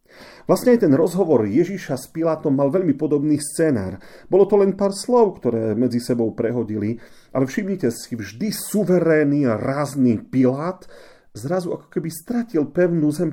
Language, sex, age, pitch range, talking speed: Slovak, male, 40-59, 120-155 Hz, 155 wpm